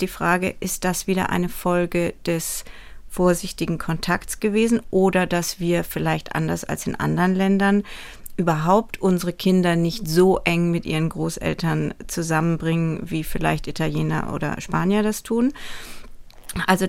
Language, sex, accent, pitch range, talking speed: German, female, German, 170-210 Hz, 135 wpm